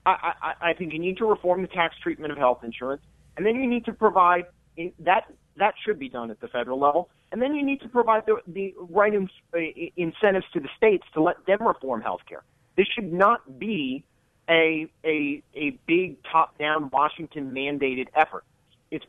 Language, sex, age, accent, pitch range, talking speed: English, male, 40-59, American, 145-180 Hz, 200 wpm